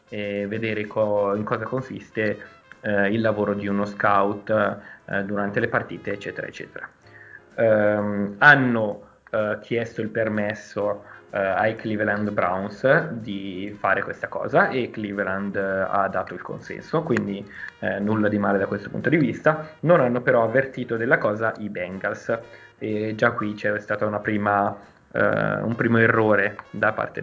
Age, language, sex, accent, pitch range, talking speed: 20-39, Italian, male, native, 105-115 Hz, 150 wpm